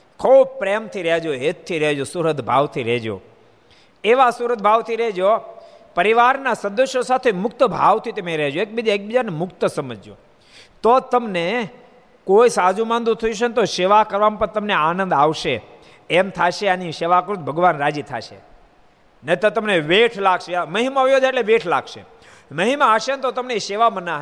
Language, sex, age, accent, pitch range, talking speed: Gujarati, male, 50-69, native, 135-205 Hz, 145 wpm